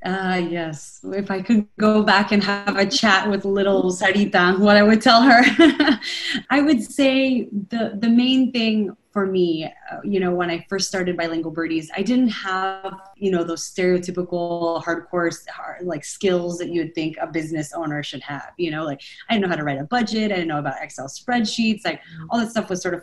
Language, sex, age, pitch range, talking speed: English, female, 20-39, 165-205 Hz, 210 wpm